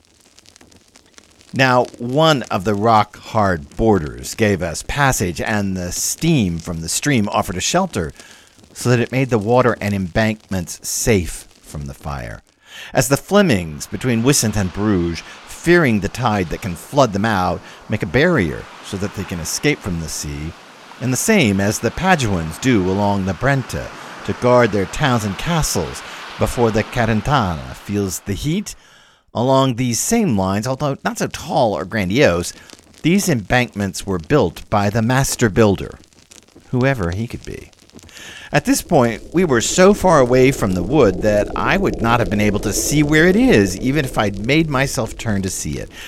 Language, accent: English, American